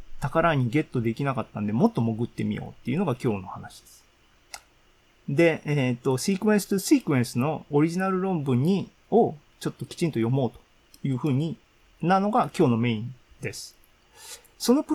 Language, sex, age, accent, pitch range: Japanese, male, 40-59, native, 120-170 Hz